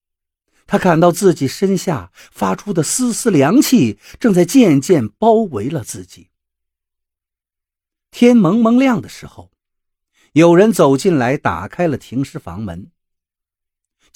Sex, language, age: male, Chinese, 50-69